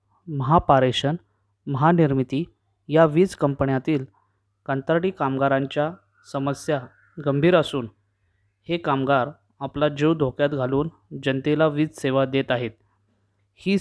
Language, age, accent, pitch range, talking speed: Marathi, 20-39, native, 105-150 Hz, 95 wpm